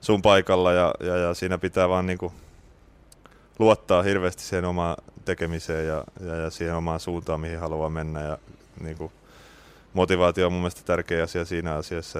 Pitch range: 80-90 Hz